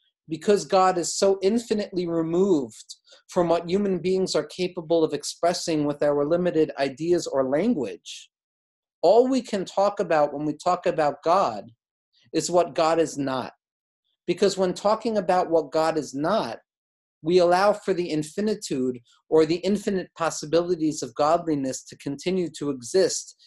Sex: male